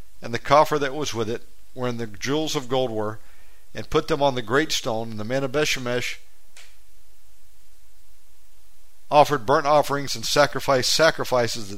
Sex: male